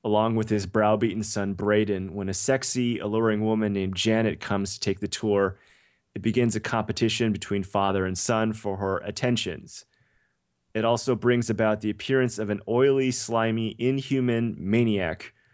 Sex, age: male, 30-49